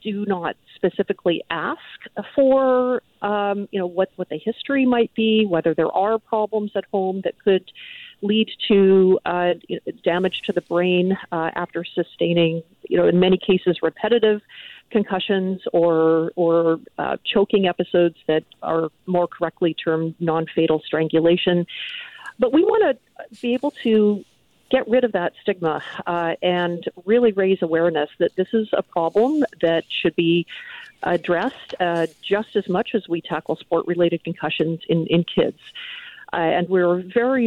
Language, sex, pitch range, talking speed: English, female, 165-210 Hz, 150 wpm